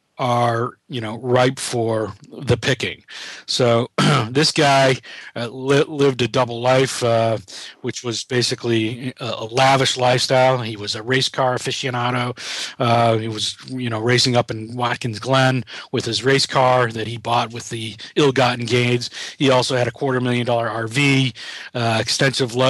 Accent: American